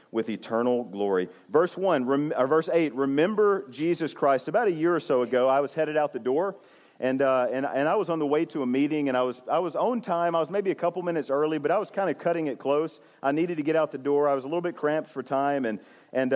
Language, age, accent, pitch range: English, 40-59, American, 145-185 Hz